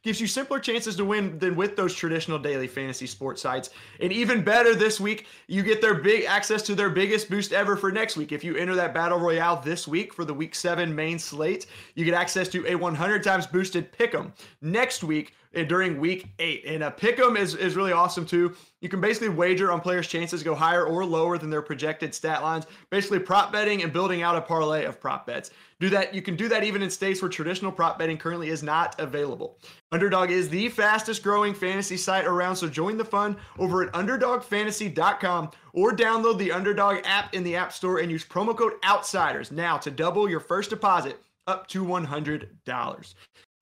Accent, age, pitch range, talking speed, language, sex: American, 30-49, 165-210 Hz, 210 wpm, English, male